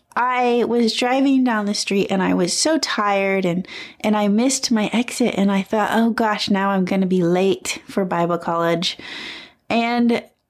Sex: female